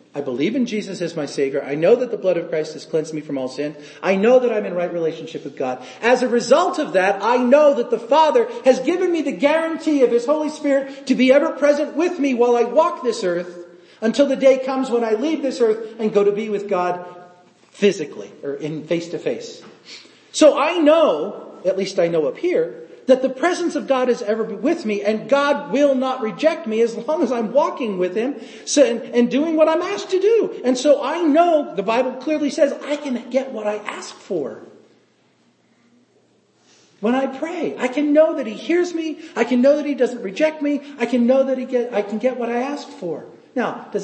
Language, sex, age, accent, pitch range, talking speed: English, male, 40-59, American, 210-290 Hz, 225 wpm